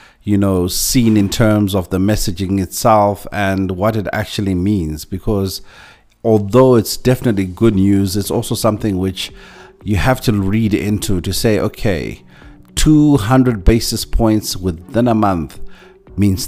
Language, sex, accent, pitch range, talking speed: English, male, South African, 95-115 Hz, 140 wpm